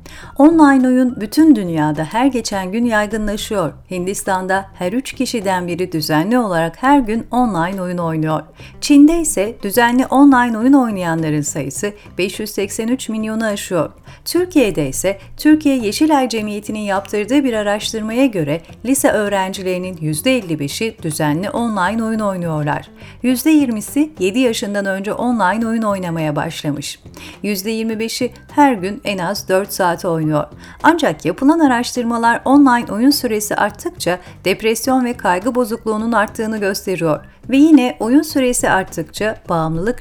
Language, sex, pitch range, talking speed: Turkish, female, 185-255 Hz, 120 wpm